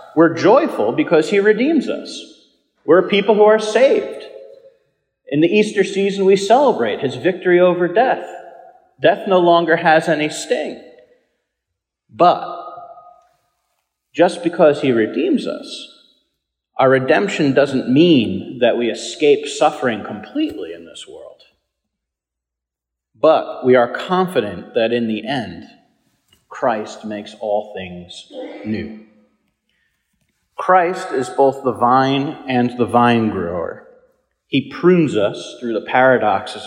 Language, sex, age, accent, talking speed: English, male, 40-59, American, 120 wpm